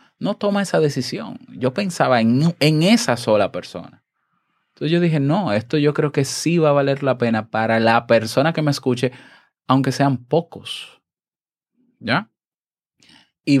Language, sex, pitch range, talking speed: Spanish, male, 105-140 Hz, 160 wpm